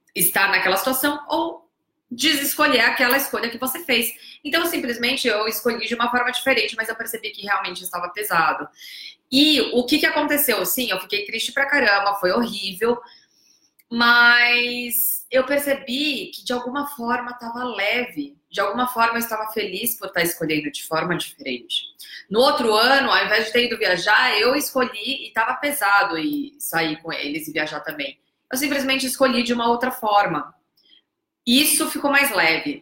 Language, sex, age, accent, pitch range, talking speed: Portuguese, female, 20-39, Brazilian, 200-275 Hz, 165 wpm